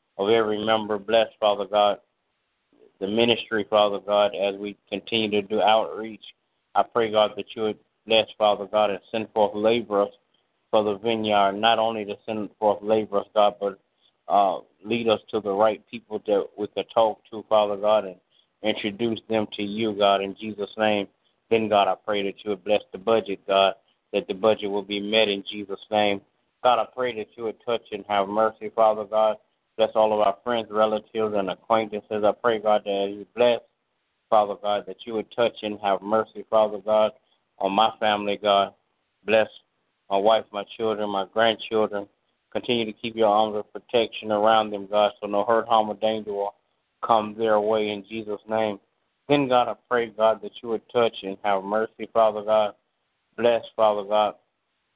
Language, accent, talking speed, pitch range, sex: English, American, 185 wpm, 100-110 Hz, male